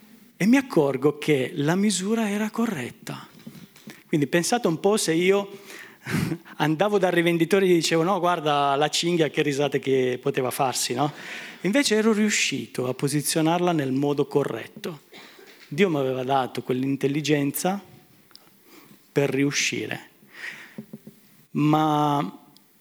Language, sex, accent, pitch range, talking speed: Italian, male, native, 130-170 Hz, 120 wpm